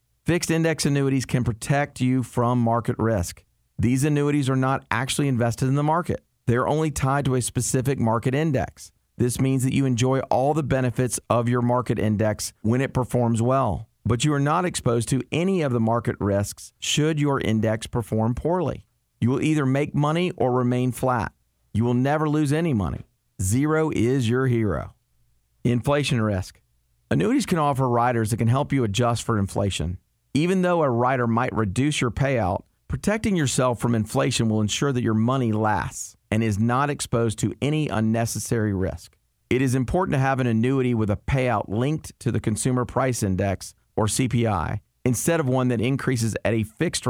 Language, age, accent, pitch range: English, 40-59, American, 110-135 Hz